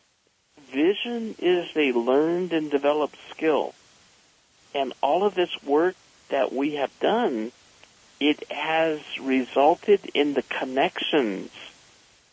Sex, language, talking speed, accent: male, English, 105 wpm, American